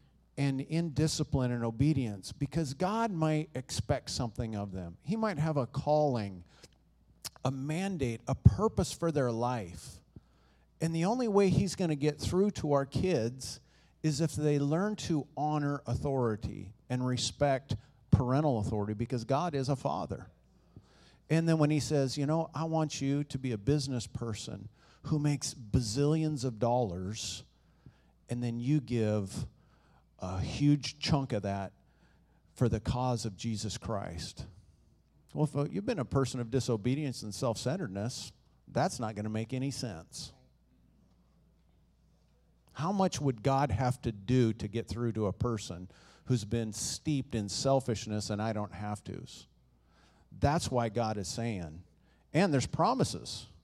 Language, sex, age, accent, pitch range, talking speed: English, male, 50-69, American, 110-145 Hz, 150 wpm